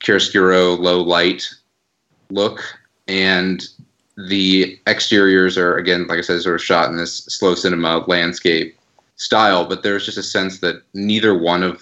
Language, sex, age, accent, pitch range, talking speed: English, male, 30-49, American, 85-95 Hz, 150 wpm